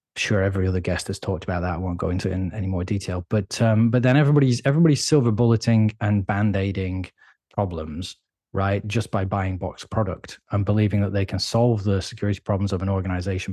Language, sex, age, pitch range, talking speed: English, male, 20-39, 95-120 Hz, 205 wpm